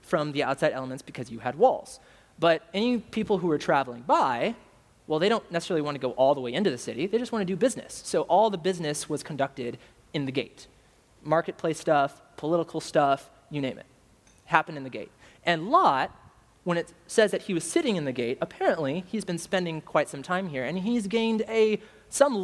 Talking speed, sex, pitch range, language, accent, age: 210 wpm, male, 145-210 Hz, English, American, 30-49